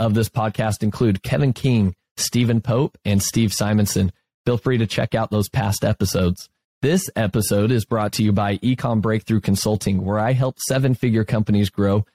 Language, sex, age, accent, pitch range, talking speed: English, male, 30-49, American, 100-125 Hz, 175 wpm